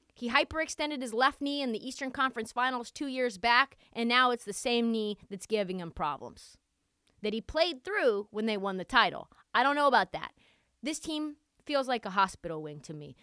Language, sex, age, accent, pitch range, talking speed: English, female, 20-39, American, 210-305 Hz, 210 wpm